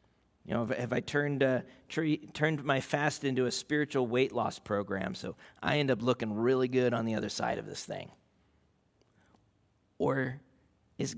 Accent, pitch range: American, 120-175 Hz